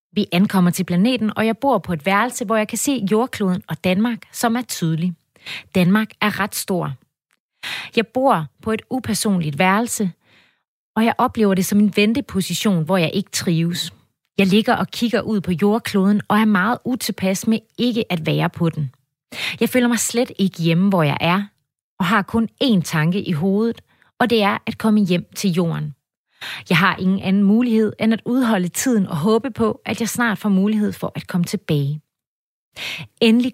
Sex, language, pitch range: female, Danish, 175-225 Hz